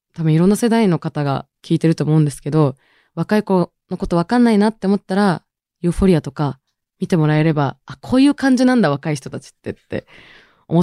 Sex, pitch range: female, 145-200 Hz